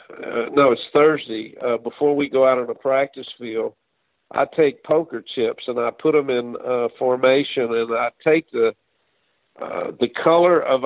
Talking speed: 175 wpm